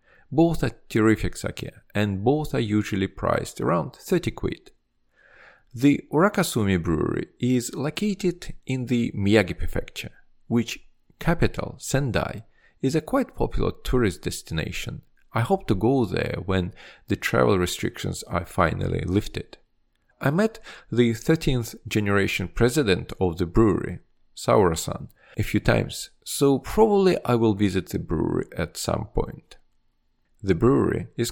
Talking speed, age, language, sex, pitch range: 130 wpm, 40-59, English, male, 100-145 Hz